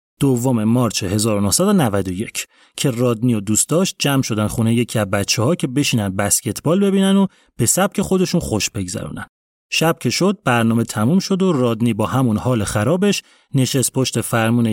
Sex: male